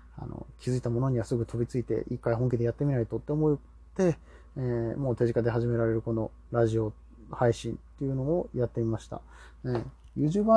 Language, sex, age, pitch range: Japanese, male, 20-39, 110-140 Hz